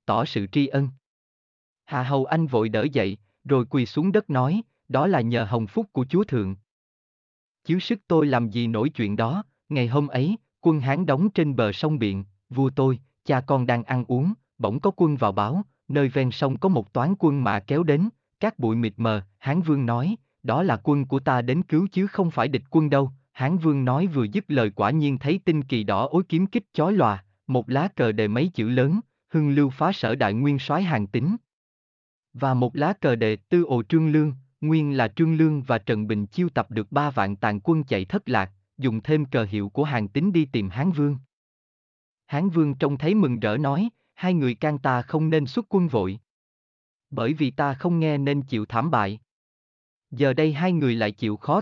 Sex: male